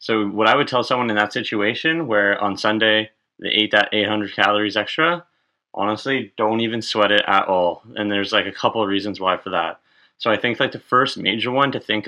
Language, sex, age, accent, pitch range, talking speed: English, male, 20-39, American, 105-125 Hz, 225 wpm